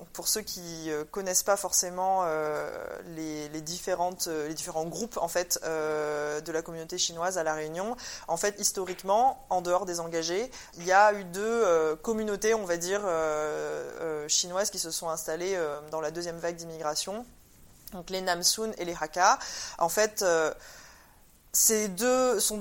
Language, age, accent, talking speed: French, 20-39, French, 175 wpm